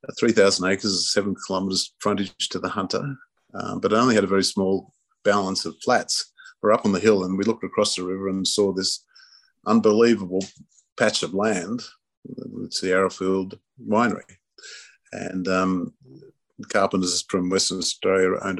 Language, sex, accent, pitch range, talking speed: English, male, Australian, 95-110 Hz, 150 wpm